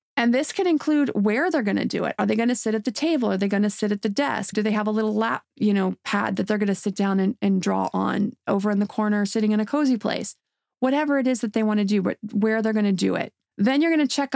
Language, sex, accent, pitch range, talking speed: English, female, American, 210-270 Hz, 310 wpm